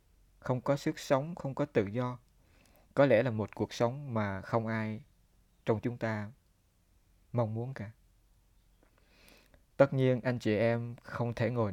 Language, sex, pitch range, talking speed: Vietnamese, male, 95-120 Hz, 160 wpm